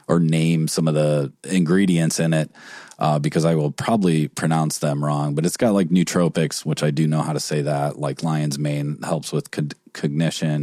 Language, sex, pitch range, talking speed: English, male, 75-90 Hz, 205 wpm